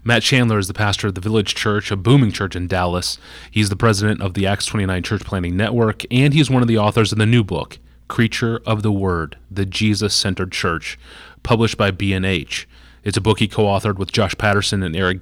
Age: 30-49